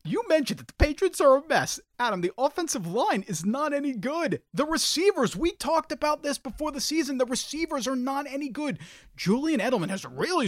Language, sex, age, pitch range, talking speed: English, male, 30-49, 180-275 Hz, 200 wpm